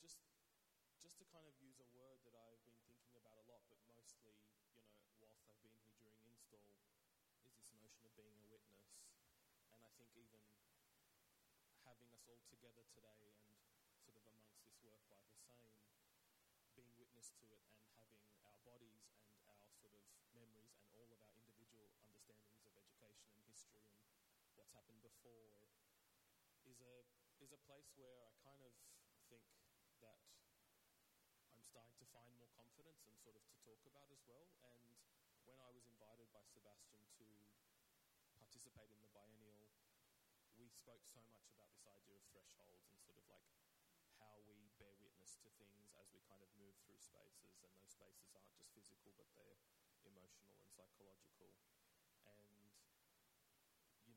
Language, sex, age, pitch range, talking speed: English, male, 20-39, 105-120 Hz, 165 wpm